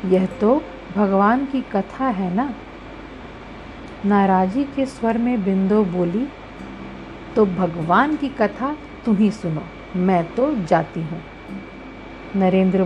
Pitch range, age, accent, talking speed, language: 180-255 Hz, 50-69, native, 115 wpm, Hindi